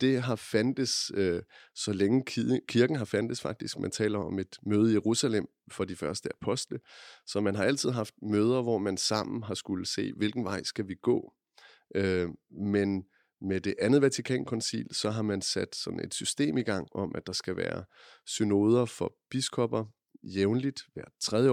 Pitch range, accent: 95-115 Hz, native